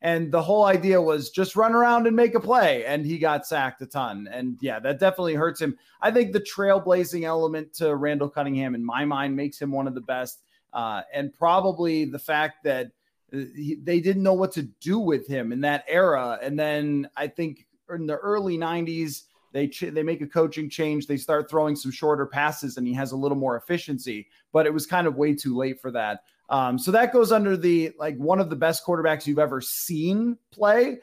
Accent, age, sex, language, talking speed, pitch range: American, 30-49, male, English, 215 wpm, 145-175 Hz